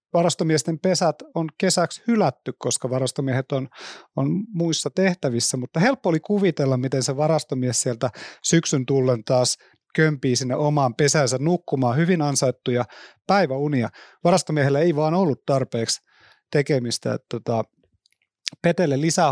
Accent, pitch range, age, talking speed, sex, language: native, 135-175 Hz, 30-49, 120 wpm, male, Finnish